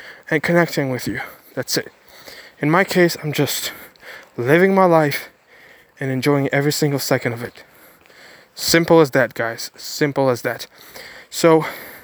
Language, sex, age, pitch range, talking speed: English, male, 20-39, 145-165 Hz, 145 wpm